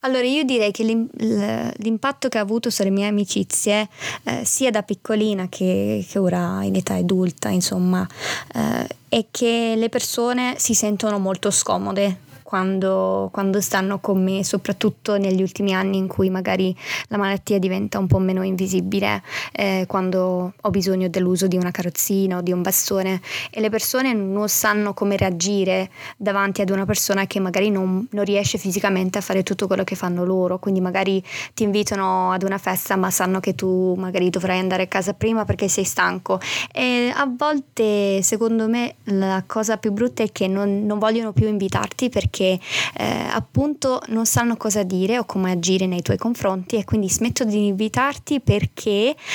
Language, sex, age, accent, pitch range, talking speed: Italian, female, 20-39, native, 185-215 Hz, 175 wpm